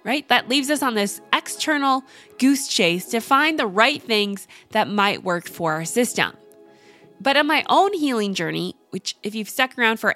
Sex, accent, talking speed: female, American, 190 wpm